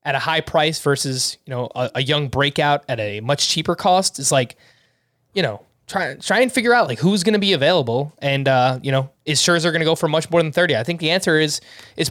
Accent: American